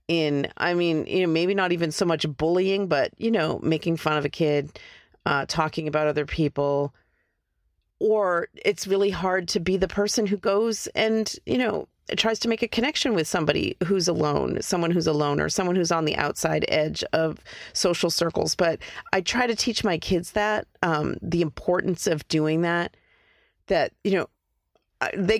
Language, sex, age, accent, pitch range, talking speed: English, female, 40-59, American, 155-190 Hz, 180 wpm